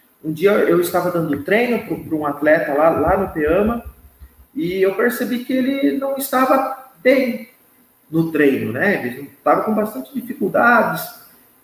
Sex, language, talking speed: male, Portuguese, 150 wpm